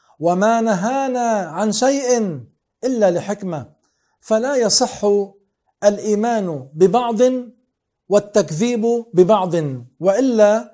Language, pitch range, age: Arabic, 180-230 Hz, 50-69